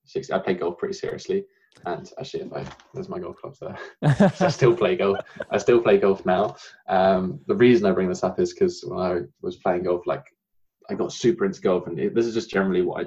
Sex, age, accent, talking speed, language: male, 20-39, British, 240 wpm, English